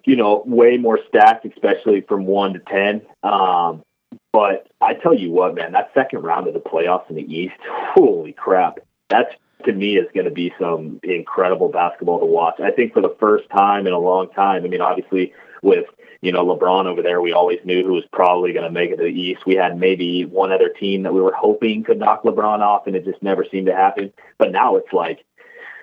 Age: 30-49